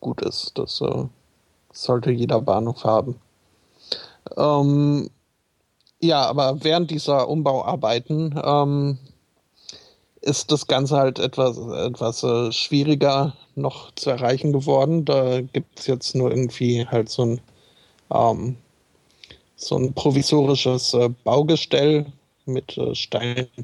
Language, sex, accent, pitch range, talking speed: German, male, German, 125-145 Hz, 110 wpm